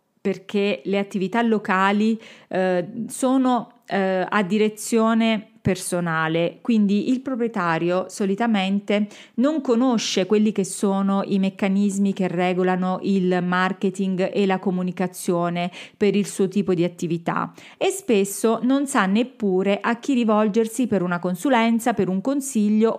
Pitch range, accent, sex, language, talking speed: 185-230 Hz, native, female, Italian, 125 wpm